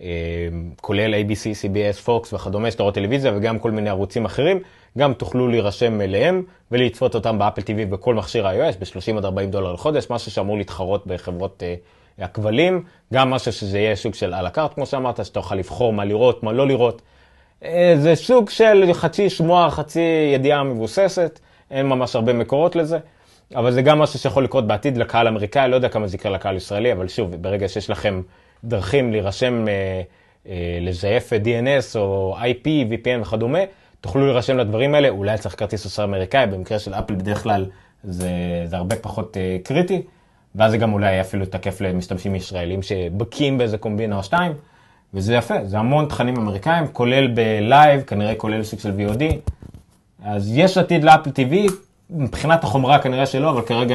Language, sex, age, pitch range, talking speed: Hebrew, male, 30-49, 100-135 Hz, 155 wpm